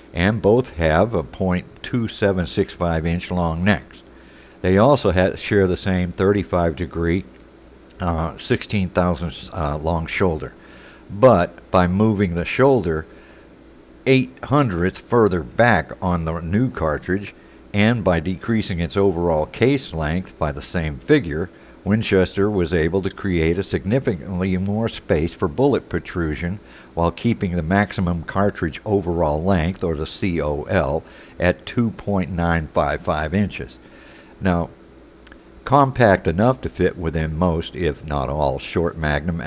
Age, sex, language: 60-79, male, English